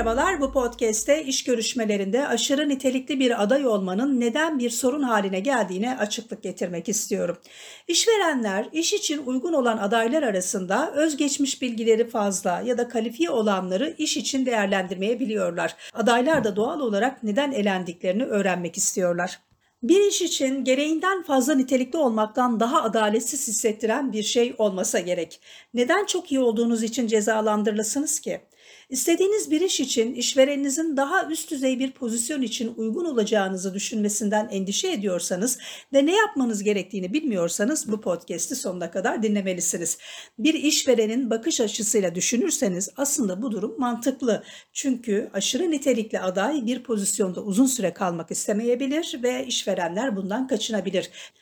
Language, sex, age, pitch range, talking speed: Turkish, female, 50-69, 205-275 Hz, 130 wpm